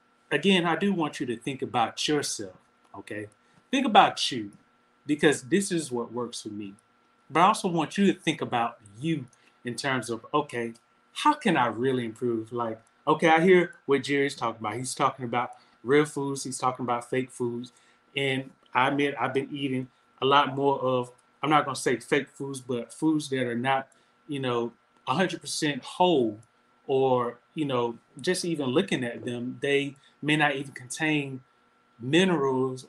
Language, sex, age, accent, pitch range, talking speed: English, male, 30-49, American, 125-155 Hz, 175 wpm